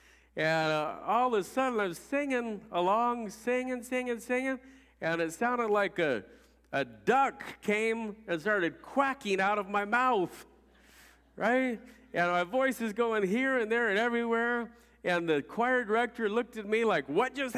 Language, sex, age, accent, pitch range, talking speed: English, male, 50-69, American, 190-255 Hz, 165 wpm